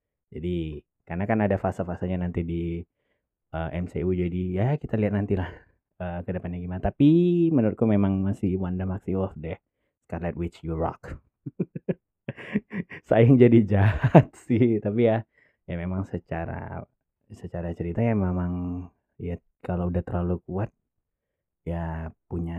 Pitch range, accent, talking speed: 85-110 Hz, native, 135 wpm